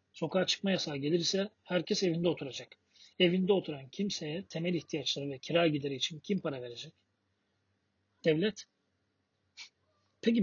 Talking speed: 120 wpm